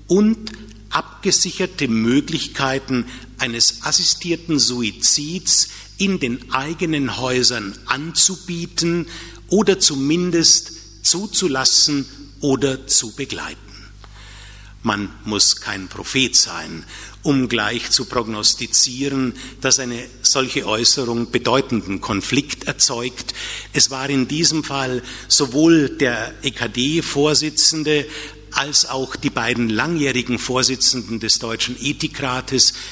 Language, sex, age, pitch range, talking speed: German, male, 50-69, 115-150 Hz, 90 wpm